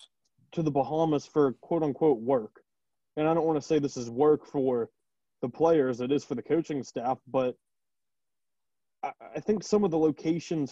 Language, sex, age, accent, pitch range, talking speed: English, male, 20-39, American, 130-155 Hz, 180 wpm